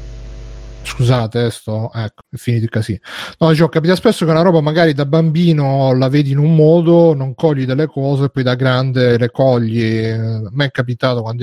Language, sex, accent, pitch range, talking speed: Italian, male, native, 125-160 Hz, 200 wpm